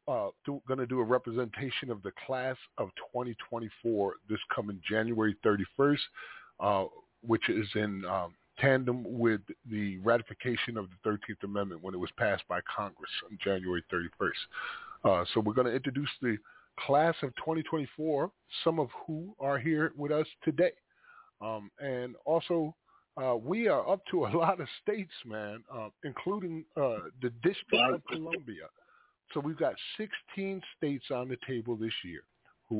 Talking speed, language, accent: 155 wpm, English, American